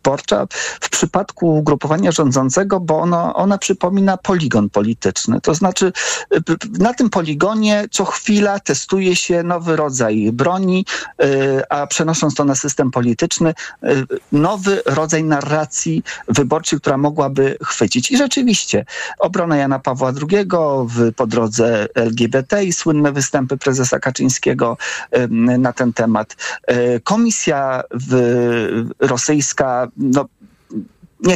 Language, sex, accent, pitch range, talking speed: Polish, male, native, 130-180 Hz, 110 wpm